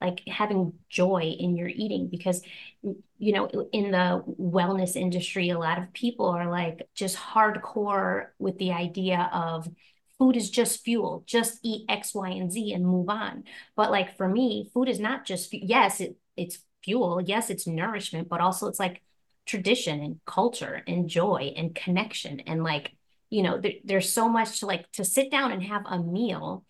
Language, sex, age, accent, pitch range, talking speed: English, female, 30-49, American, 175-210 Hz, 180 wpm